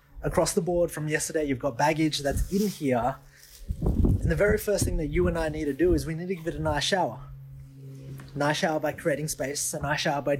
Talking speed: 235 wpm